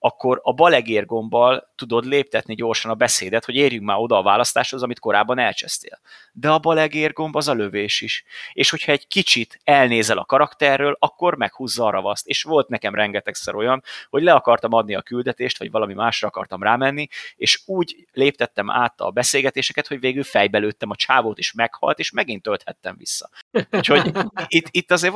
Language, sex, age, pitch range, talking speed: Hungarian, male, 30-49, 105-140 Hz, 170 wpm